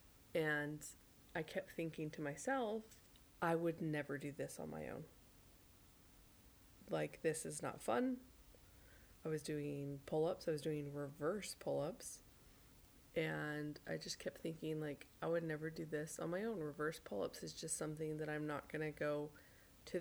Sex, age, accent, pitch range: female, 20-39, American, 140-165 Hz